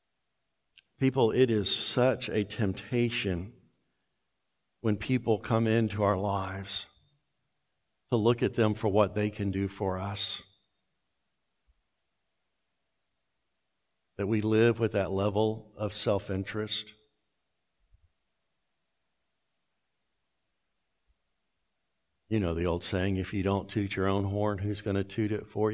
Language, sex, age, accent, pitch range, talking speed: English, male, 60-79, American, 100-145 Hz, 115 wpm